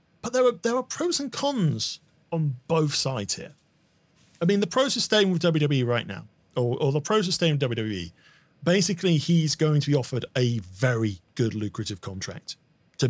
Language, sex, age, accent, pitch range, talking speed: English, male, 40-59, British, 125-165 Hz, 195 wpm